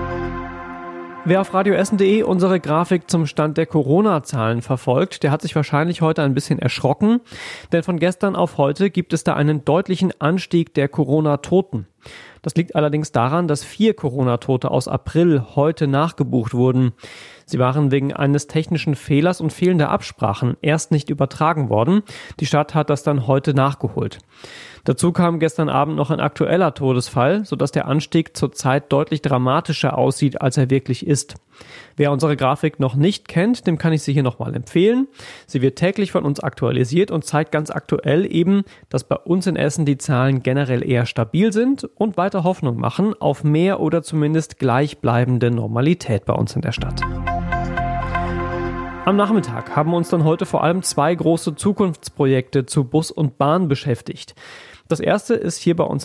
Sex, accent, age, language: male, German, 30-49, German